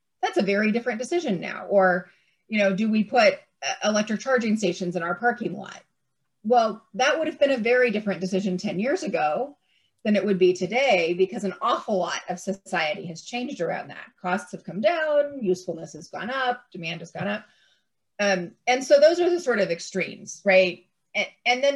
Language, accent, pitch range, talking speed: English, American, 180-230 Hz, 195 wpm